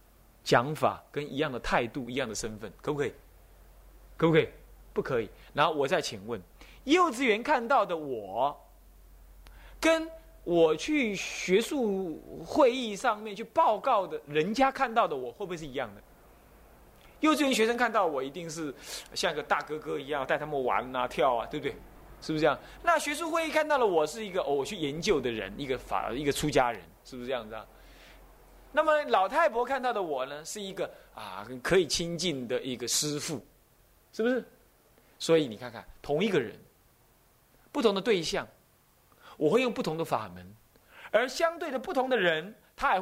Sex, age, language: male, 20-39, Chinese